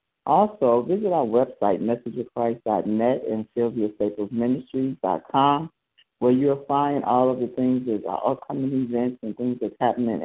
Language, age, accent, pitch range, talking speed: English, 60-79, American, 120-135 Hz, 125 wpm